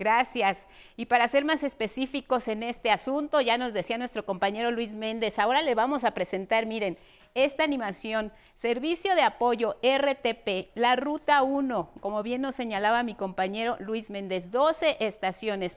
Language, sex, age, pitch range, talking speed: Spanish, female, 50-69, 210-265 Hz, 155 wpm